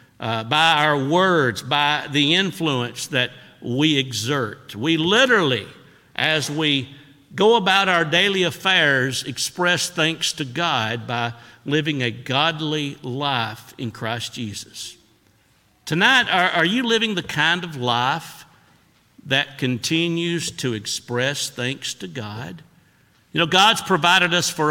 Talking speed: 130 wpm